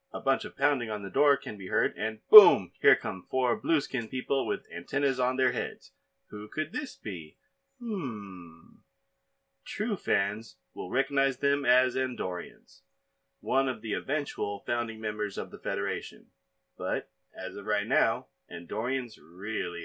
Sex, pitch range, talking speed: male, 110-145 Hz, 150 wpm